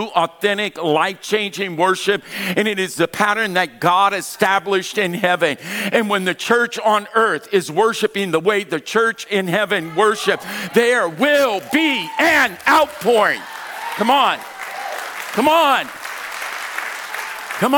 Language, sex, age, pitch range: English, male, 50-69, 175-220 Hz